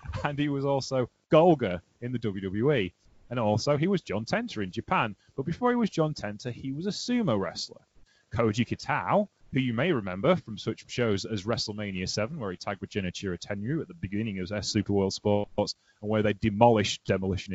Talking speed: 200 wpm